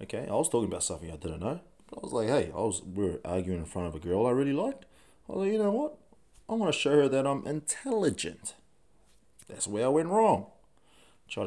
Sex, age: male, 20-39